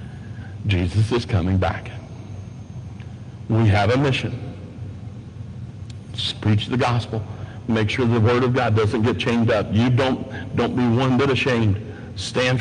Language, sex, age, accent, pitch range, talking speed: English, male, 60-79, American, 110-140 Hz, 140 wpm